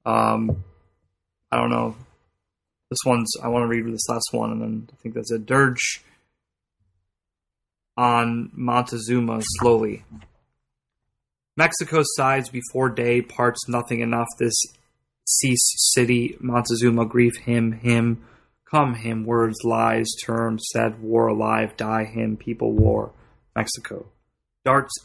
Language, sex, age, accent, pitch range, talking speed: English, male, 20-39, American, 110-120 Hz, 120 wpm